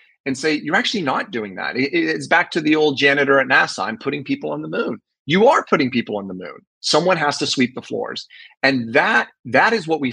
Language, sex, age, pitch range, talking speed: English, male, 30-49, 125-185 Hz, 235 wpm